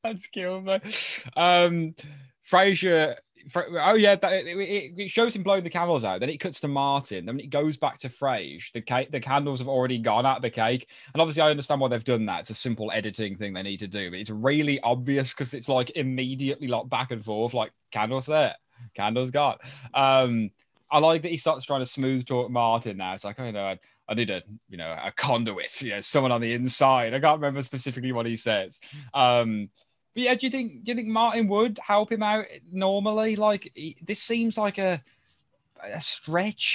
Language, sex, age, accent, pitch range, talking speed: English, male, 20-39, British, 120-180 Hz, 215 wpm